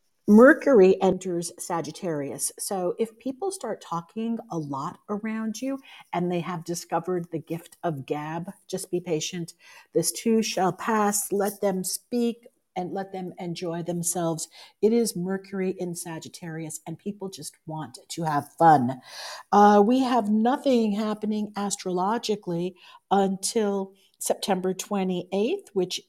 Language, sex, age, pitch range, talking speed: English, female, 50-69, 170-220 Hz, 130 wpm